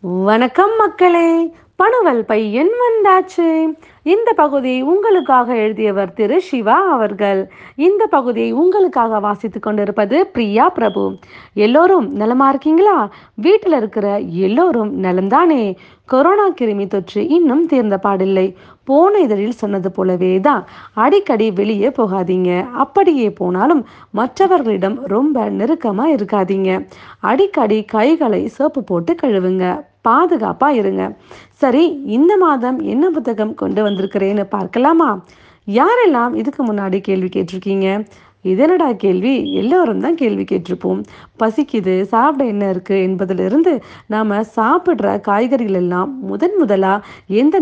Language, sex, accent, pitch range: Tamil, female, native, 200-310 Hz